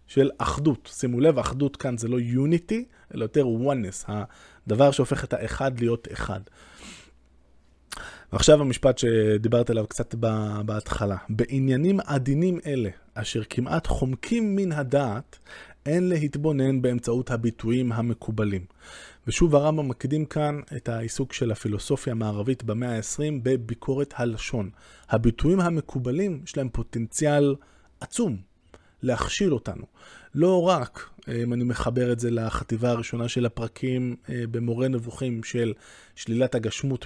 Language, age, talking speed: Hebrew, 20-39, 120 wpm